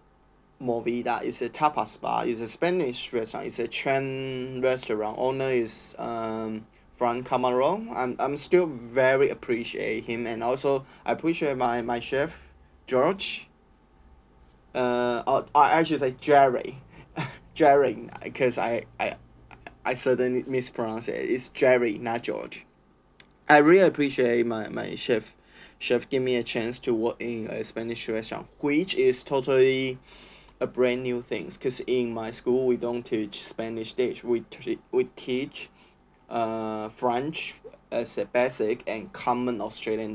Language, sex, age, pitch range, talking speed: English, male, 20-39, 115-135 Hz, 145 wpm